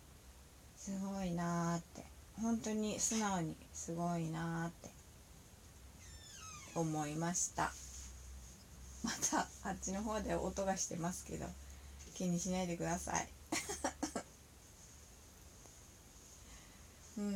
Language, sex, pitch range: Japanese, female, 130-195 Hz